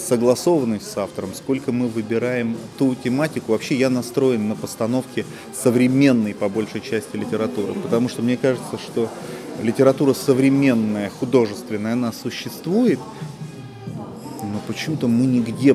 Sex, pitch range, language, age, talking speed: male, 115-135 Hz, Russian, 30-49, 120 wpm